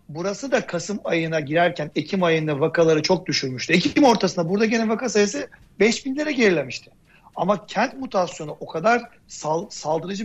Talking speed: 145 wpm